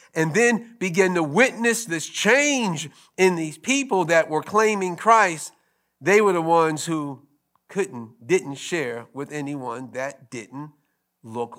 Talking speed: 140 wpm